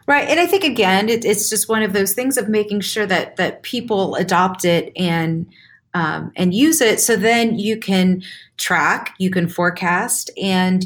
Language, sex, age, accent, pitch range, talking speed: English, female, 30-49, American, 180-235 Hz, 190 wpm